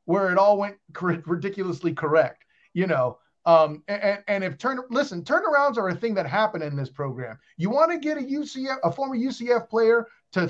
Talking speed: 200 wpm